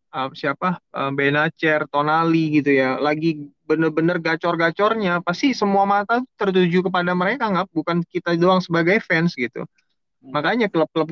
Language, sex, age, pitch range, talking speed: Indonesian, male, 20-39, 145-180 Hz, 125 wpm